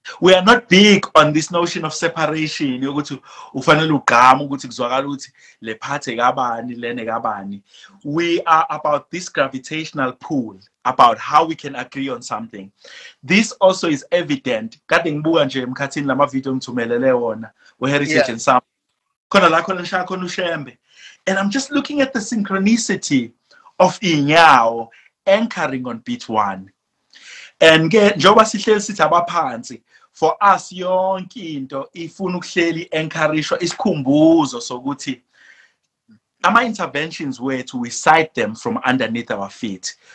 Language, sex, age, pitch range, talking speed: English, male, 30-49, 135-195 Hz, 100 wpm